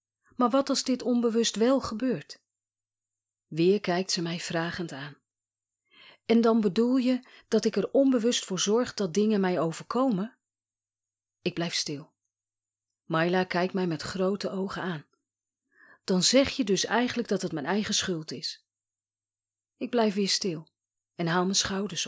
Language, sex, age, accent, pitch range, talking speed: Dutch, female, 40-59, Dutch, 145-215 Hz, 150 wpm